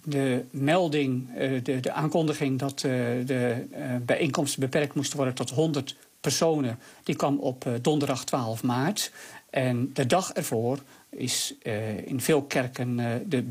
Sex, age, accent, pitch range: male, 50-69, Dutch, 130-150 Hz